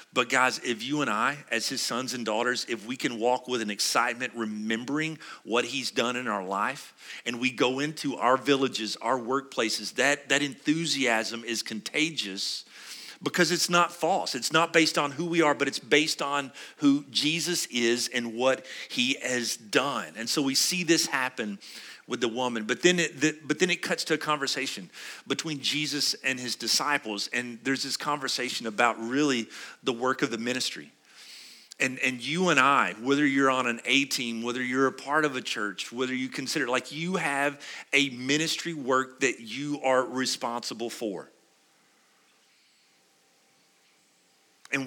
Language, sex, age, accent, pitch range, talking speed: English, male, 40-59, American, 120-150 Hz, 175 wpm